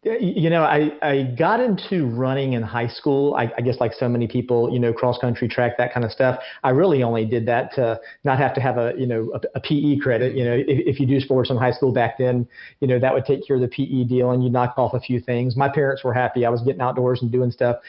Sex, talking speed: male, 280 wpm